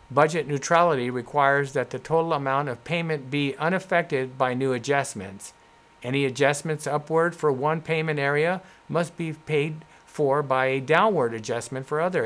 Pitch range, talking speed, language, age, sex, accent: 130-155 Hz, 150 wpm, English, 50-69, male, American